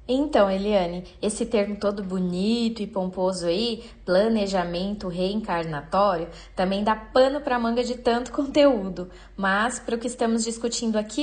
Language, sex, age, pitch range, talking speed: Portuguese, female, 20-39, 195-250 Hz, 140 wpm